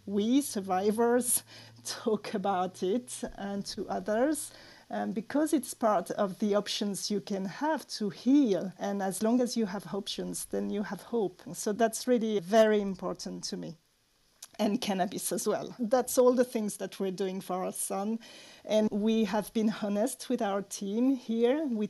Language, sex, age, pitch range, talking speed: English, female, 40-59, 200-245 Hz, 165 wpm